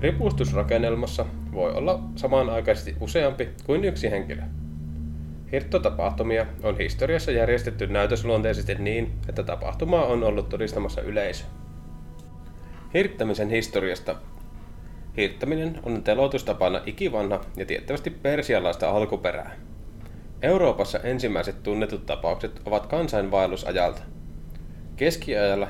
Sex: male